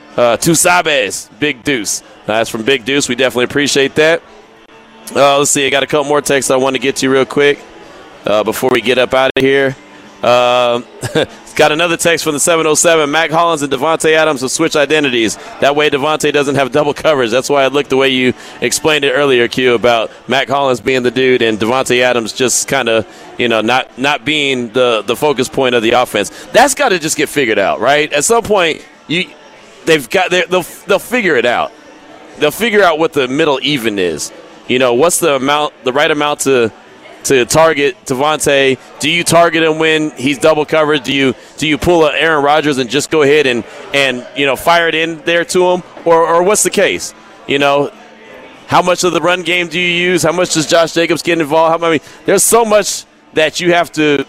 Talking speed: 220 wpm